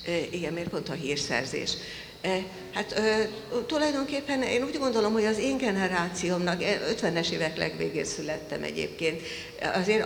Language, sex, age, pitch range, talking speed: Hungarian, female, 60-79, 150-185 Hz, 120 wpm